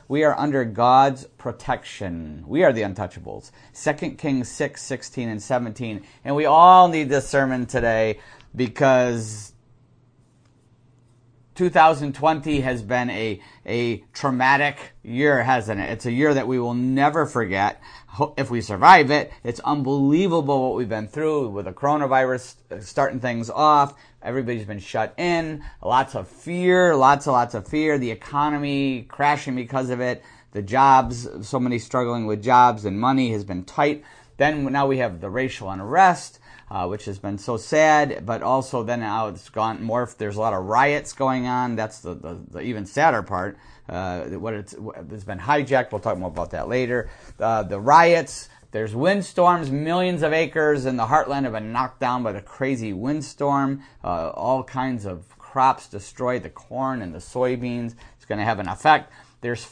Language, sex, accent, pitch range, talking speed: English, male, American, 110-145 Hz, 170 wpm